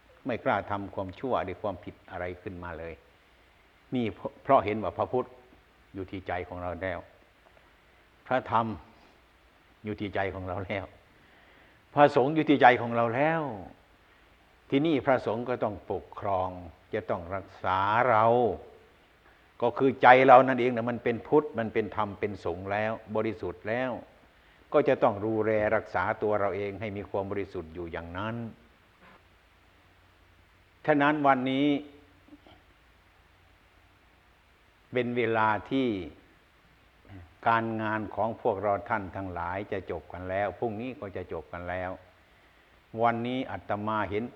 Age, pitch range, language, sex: 60-79, 90-115 Hz, Thai, male